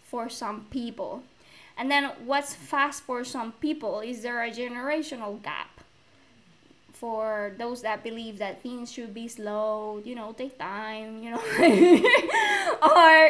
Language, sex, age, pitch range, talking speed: English, female, 20-39, 225-285 Hz, 140 wpm